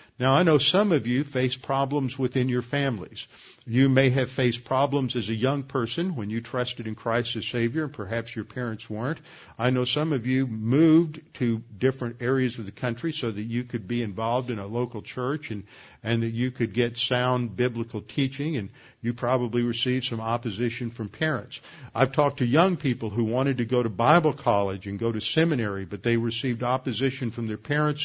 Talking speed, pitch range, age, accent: 200 wpm, 115-135 Hz, 50-69, American